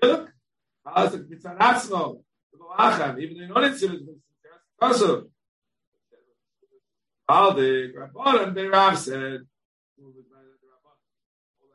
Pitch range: 130-185 Hz